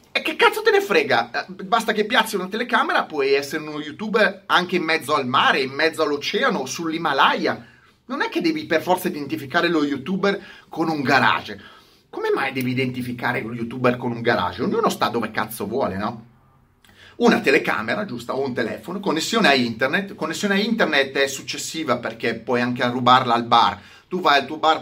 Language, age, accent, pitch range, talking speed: Italian, 30-49, native, 120-190 Hz, 185 wpm